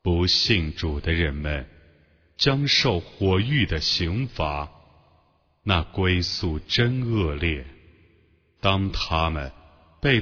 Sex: male